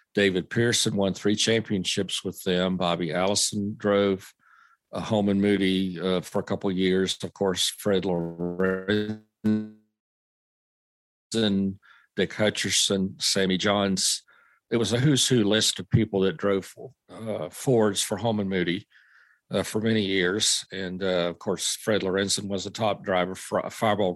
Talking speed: 145 wpm